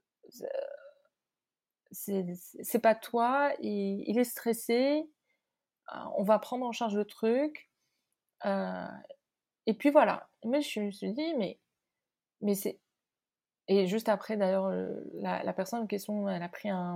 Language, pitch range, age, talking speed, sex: French, 185-245 Hz, 30-49, 140 wpm, female